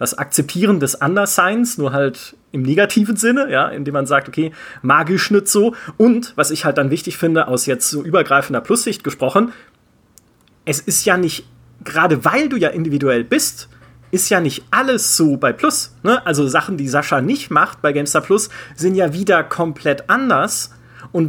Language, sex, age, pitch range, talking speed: German, male, 30-49, 140-195 Hz, 180 wpm